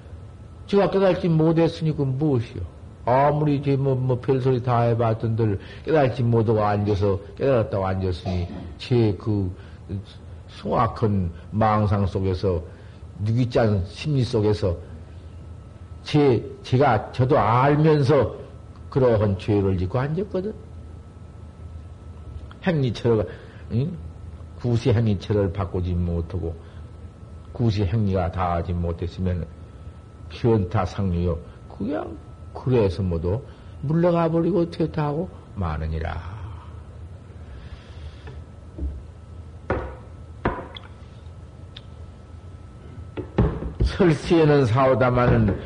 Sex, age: male, 50-69